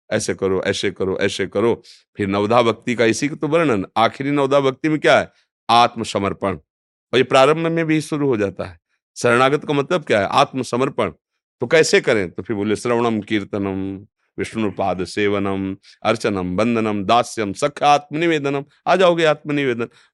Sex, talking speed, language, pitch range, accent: male, 160 wpm, Hindi, 105-140 Hz, native